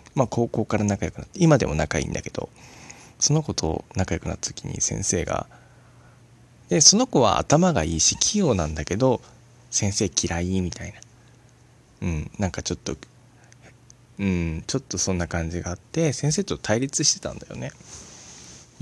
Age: 20-39